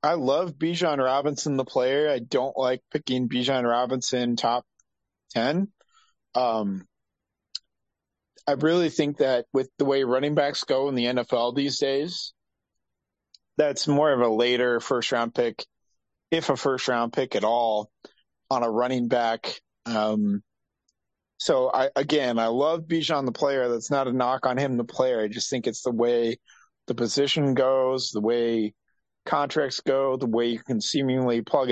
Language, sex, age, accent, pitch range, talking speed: English, male, 40-59, American, 115-140 Hz, 160 wpm